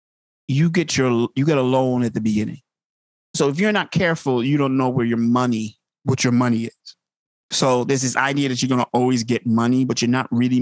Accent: American